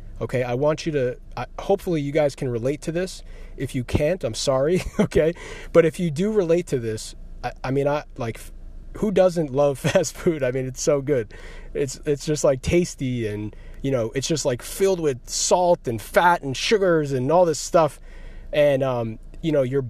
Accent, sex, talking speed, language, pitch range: American, male, 205 wpm, English, 125-175 Hz